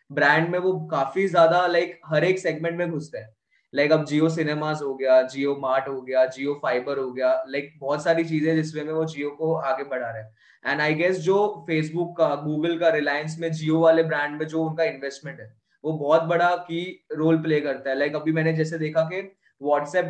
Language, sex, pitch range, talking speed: Hindi, male, 145-170 Hz, 225 wpm